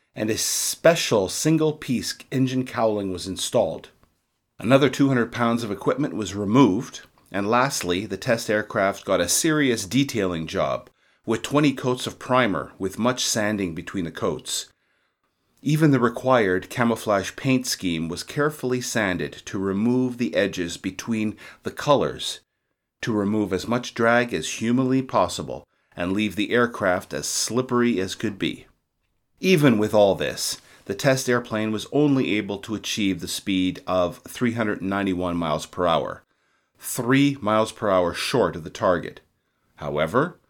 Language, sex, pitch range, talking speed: English, male, 95-125 Hz, 145 wpm